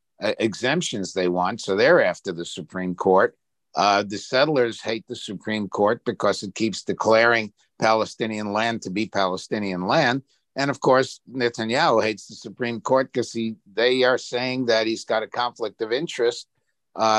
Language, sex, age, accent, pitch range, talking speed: English, male, 50-69, American, 100-125 Hz, 160 wpm